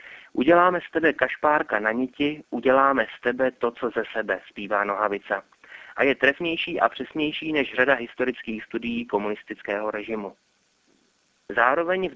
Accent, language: native, Czech